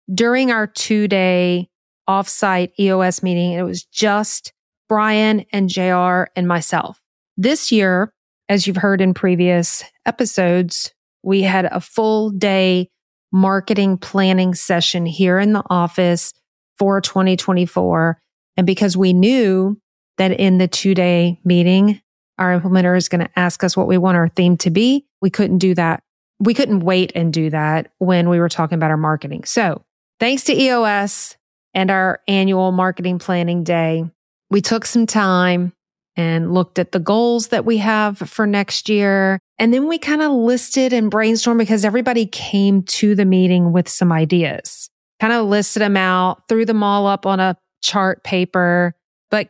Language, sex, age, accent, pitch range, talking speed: English, female, 40-59, American, 180-205 Hz, 160 wpm